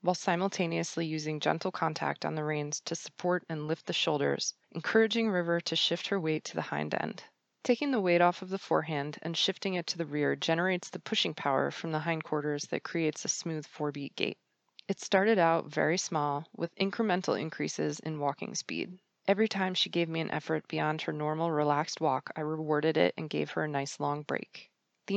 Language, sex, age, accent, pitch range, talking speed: English, female, 20-39, American, 150-185 Hz, 200 wpm